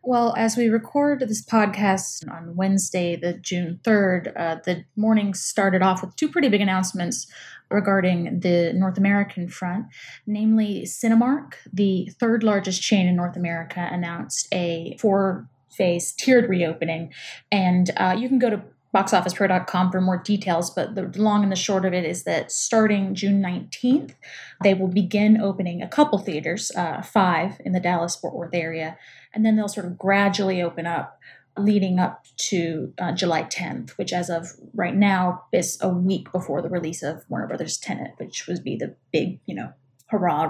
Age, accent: 20-39, American